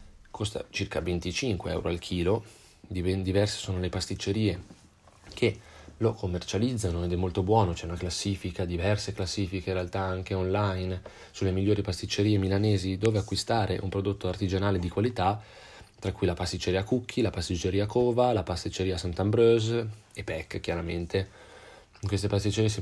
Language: Italian